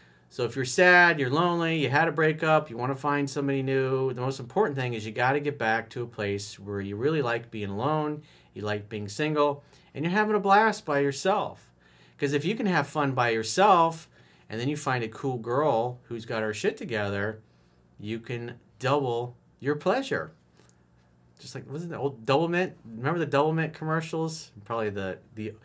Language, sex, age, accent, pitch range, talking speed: English, male, 40-59, American, 105-145 Hz, 200 wpm